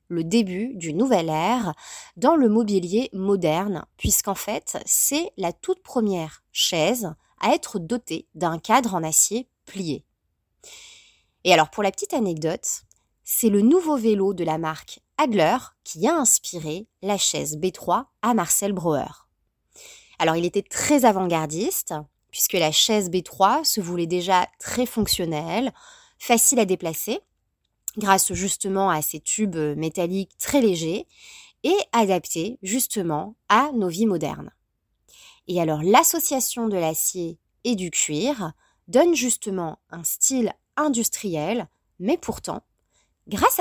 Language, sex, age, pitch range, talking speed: French, female, 20-39, 170-245 Hz, 130 wpm